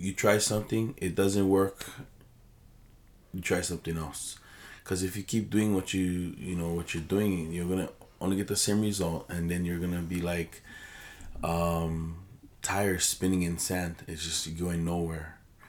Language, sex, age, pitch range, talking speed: English, male, 20-39, 85-95 Hz, 170 wpm